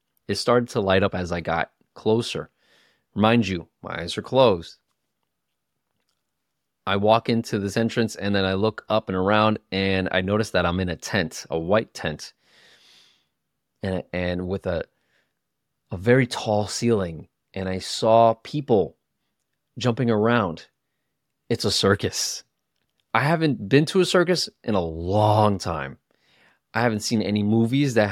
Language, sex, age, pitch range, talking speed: English, male, 30-49, 95-130 Hz, 150 wpm